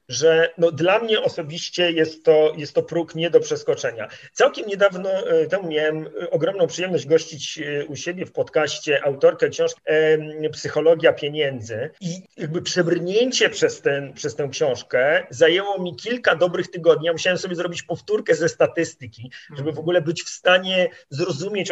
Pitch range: 165-245 Hz